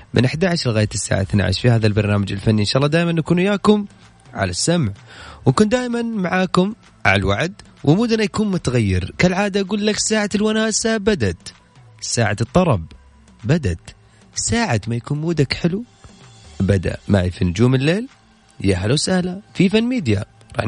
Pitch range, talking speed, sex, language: 105-175 Hz, 145 wpm, male, Arabic